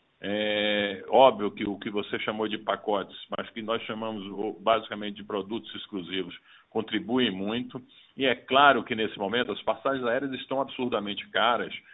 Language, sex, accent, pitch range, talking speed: Portuguese, male, Brazilian, 100-125 Hz, 155 wpm